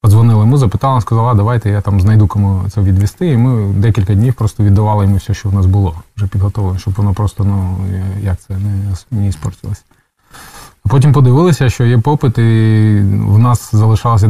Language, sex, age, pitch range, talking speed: Ukrainian, male, 20-39, 100-115 Hz, 180 wpm